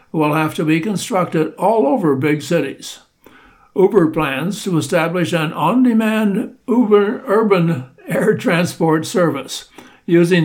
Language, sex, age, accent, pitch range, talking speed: English, male, 60-79, American, 155-195 Hz, 115 wpm